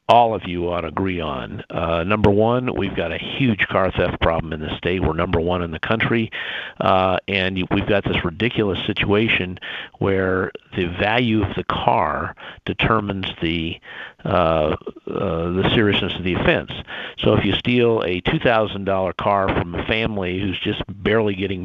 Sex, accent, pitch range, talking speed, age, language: male, American, 90-105 Hz, 175 wpm, 50-69, English